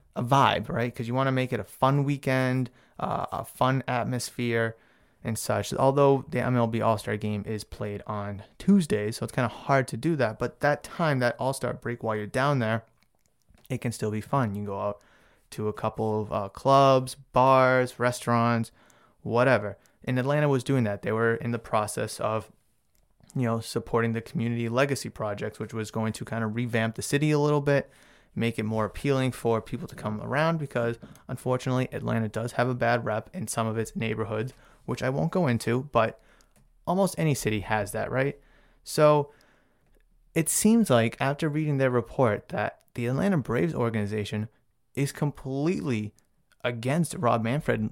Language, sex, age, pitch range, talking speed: English, male, 20-39, 110-135 Hz, 180 wpm